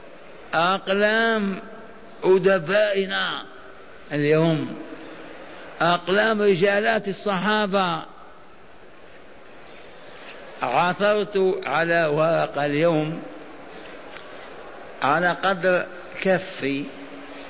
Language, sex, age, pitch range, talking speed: Arabic, male, 60-79, 160-190 Hz, 45 wpm